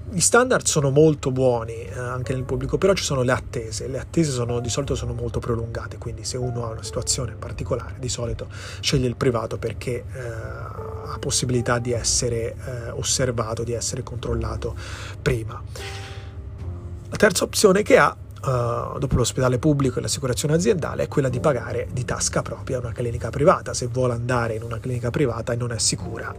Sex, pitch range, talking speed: male, 110-135 Hz, 175 wpm